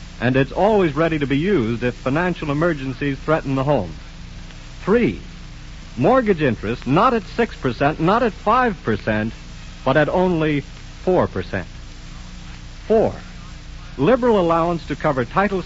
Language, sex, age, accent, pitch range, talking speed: English, male, 70-89, American, 135-180 Hz, 125 wpm